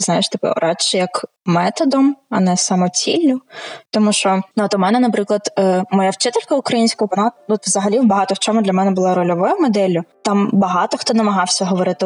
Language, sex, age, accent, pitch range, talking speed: Ukrainian, female, 20-39, native, 190-230 Hz, 170 wpm